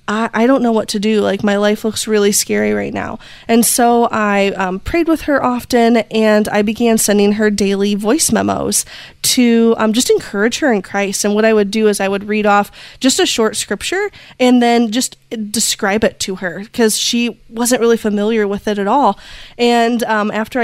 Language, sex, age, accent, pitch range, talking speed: English, female, 20-39, American, 205-235 Hz, 205 wpm